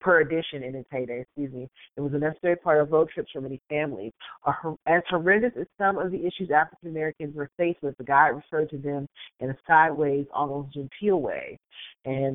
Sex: female